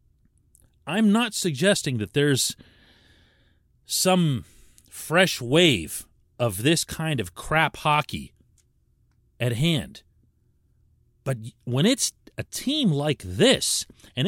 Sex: male